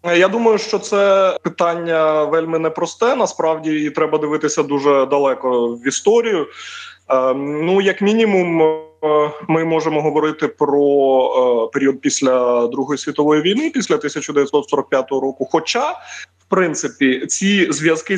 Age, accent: 20-39, native